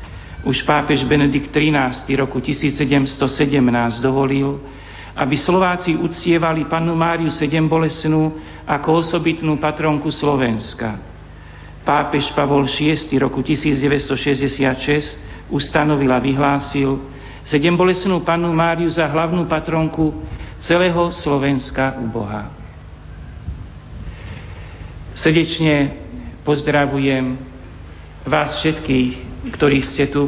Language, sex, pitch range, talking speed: Slovak, male, 120-145 Hz, 85 wpm